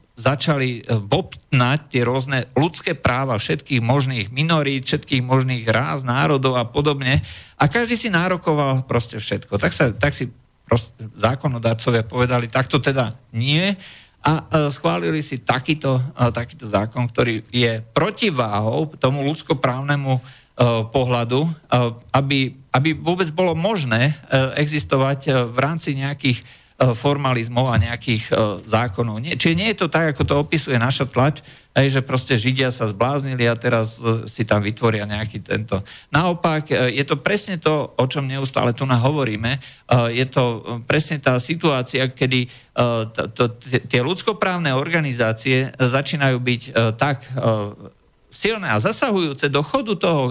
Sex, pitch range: male, 120-150 Hz